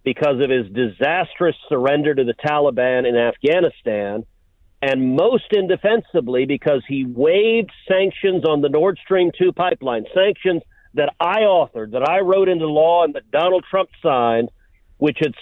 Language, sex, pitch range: English, male, 125-185 Hz